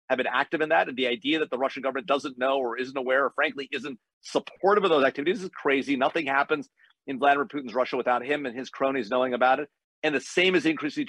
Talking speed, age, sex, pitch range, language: 240 wpm, 40-59, male, 125-150 Hz, English